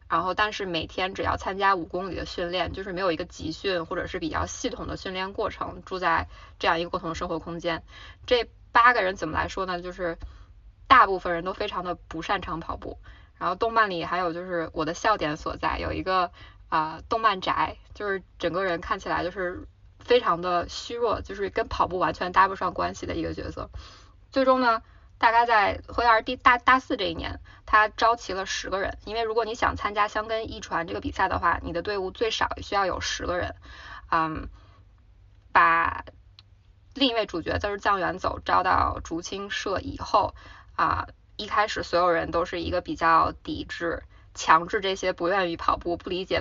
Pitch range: 165-215 Hz